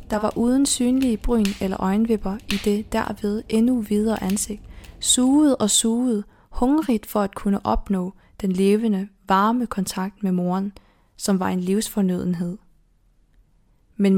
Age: 20-39